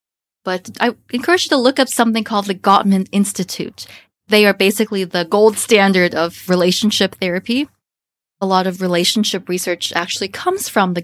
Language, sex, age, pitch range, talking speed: English, female, 20-39, 185-240 Hz, 165 wpm